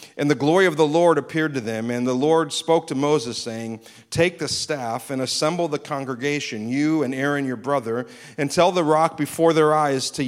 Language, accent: English, American